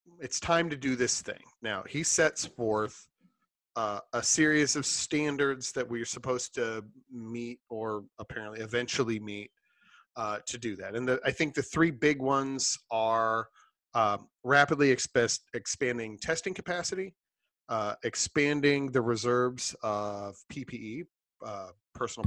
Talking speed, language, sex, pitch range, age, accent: 130 wpm, English, male, 115-145 Hz, 40-59, American